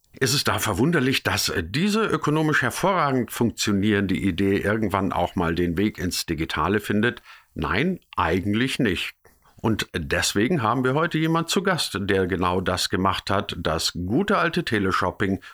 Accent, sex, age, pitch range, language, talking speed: German, male, 50-69, 85-110 Hz, German, 145 wpm